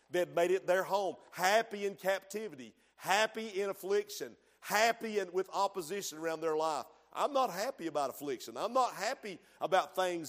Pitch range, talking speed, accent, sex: 185-240 Hz, 165 wpm, American, male